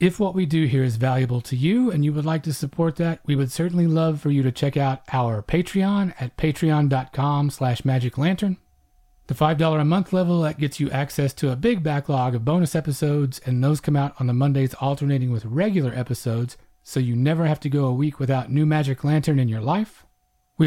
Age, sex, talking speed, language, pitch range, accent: 40-59, male, 210 wpm, English, 135-165 Hz, American